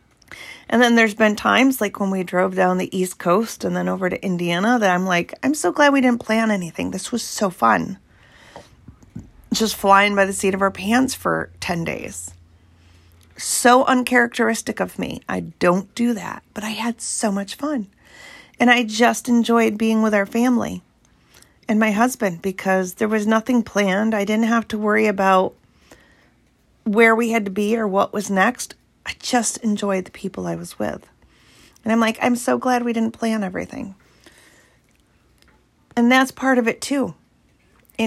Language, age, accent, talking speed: English, 40-59, American, 180 wpm